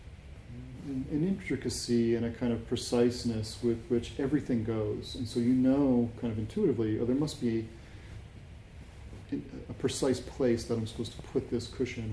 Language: English